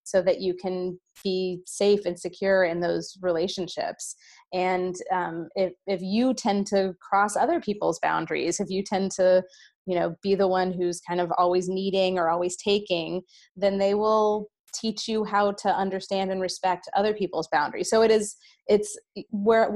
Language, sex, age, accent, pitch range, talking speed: English, female, 20-39, American, 180-205 Hz, 175 wpm